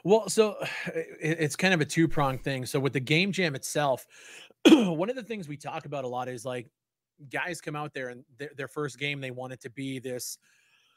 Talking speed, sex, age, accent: 215 wpm, male, 30-49, American